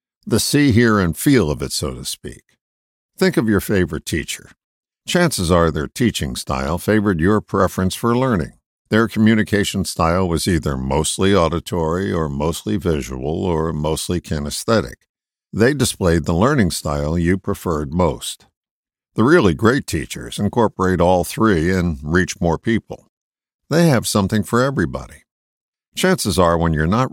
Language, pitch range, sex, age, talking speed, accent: English, 80-110 Hz, male, 60-79, 150 wpm, American